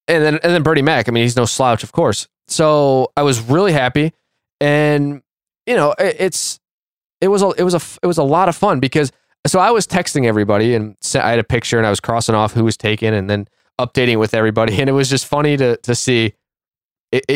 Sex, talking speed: male, 240 wpm